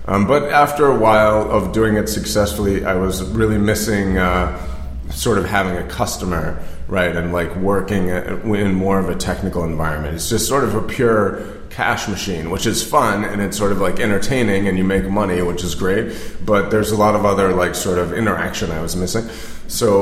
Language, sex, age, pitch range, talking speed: Czech, male, 30-49, 90-105 Hz, 200 wpm